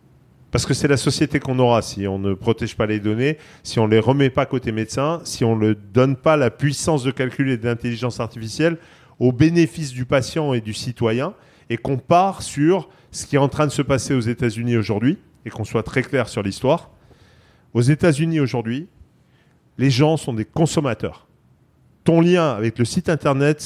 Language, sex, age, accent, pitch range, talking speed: French, male, 40-59, French, 115-160 Hz, 200 wpm